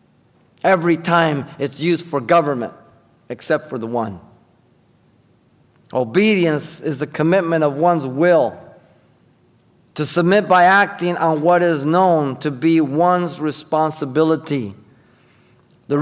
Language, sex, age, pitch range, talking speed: English, male, 50-69, 160-220 Hz, 110 wpm